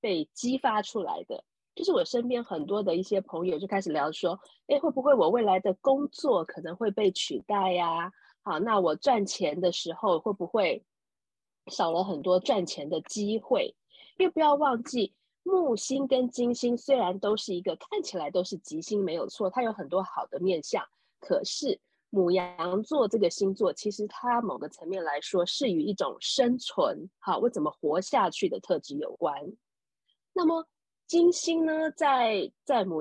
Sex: female